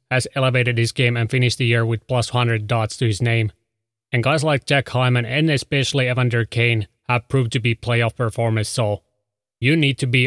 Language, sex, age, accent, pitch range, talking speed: English, male, 30-49, Finnish, 115-130 Hz, 205 wpm